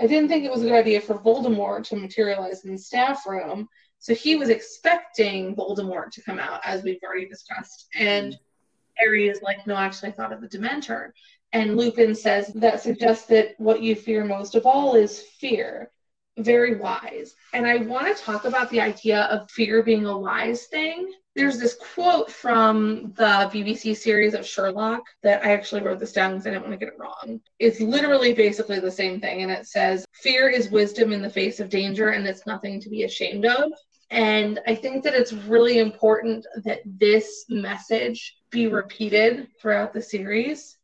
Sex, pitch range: female, 200-235 Hz